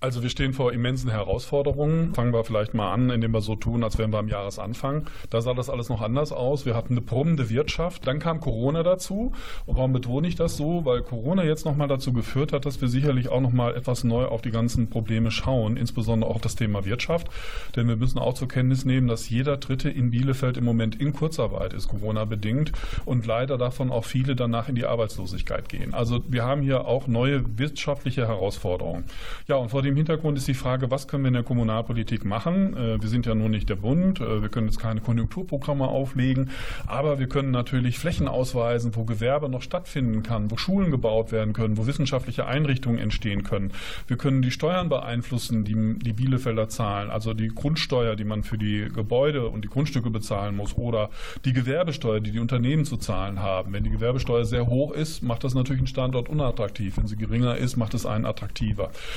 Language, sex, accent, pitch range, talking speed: German, male, German, 110-135 Hz, 210 wpm